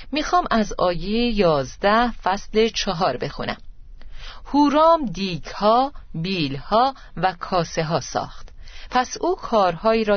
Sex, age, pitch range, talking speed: female, 40-59, 160-220 Hz, 105 wpm